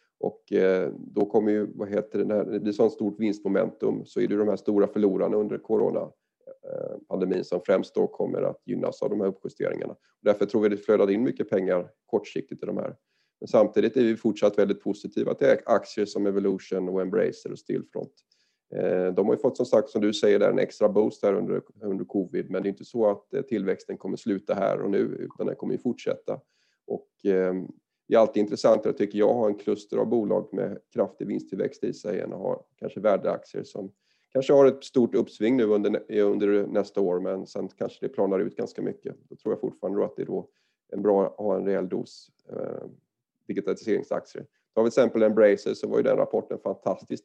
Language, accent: Swedish, native